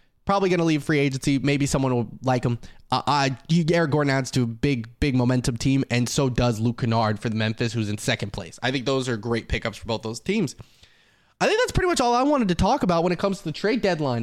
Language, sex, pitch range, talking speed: English, male, 125-170 Hz, 260 wpm